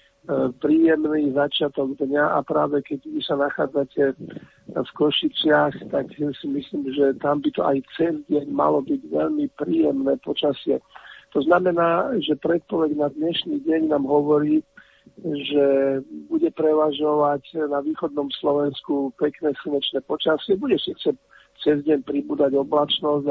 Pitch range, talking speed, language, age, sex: 140-155 Hz, 130 wpm, Slovak, 50-69, male